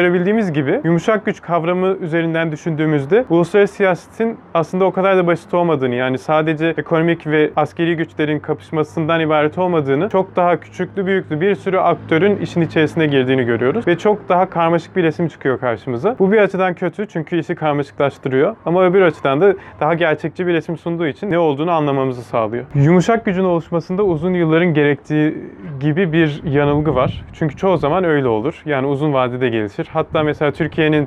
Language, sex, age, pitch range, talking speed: Turkish, male, 30-49, 145-180 Hz, 165 wpm